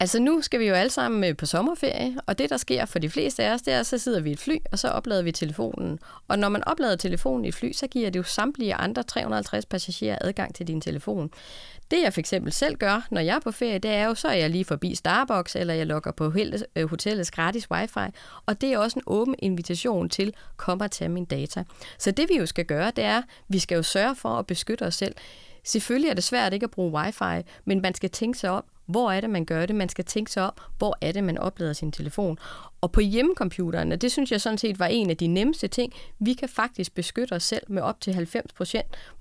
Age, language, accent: 30-49, Danish, native